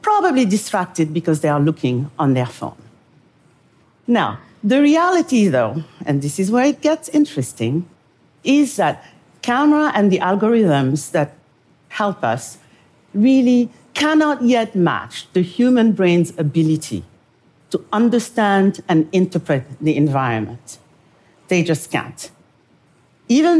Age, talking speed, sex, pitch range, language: 50-69, 120 wpm, female, 155-230 Hz, English